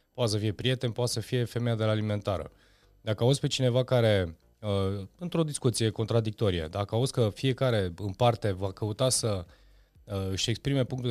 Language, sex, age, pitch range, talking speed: Romanian, male, 30-49, 100-135 Hz, 165 wpm